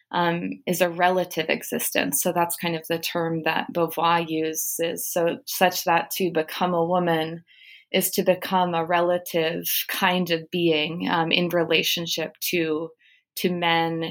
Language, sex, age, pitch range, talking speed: English, female, 20-39, 165-205 Hz, 150 wpm